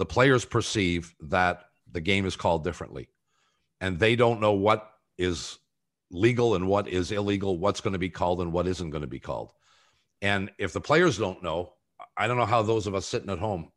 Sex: male